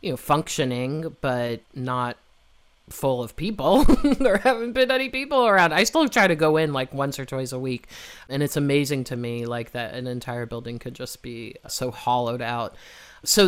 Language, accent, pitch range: English, American, 125-155 Hz